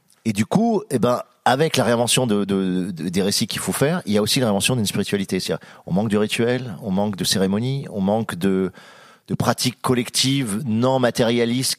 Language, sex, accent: French, male, French